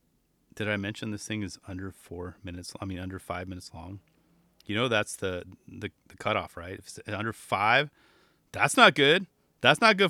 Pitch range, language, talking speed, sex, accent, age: 100-145 Hz, English, 195 wpm, male, American, 30-49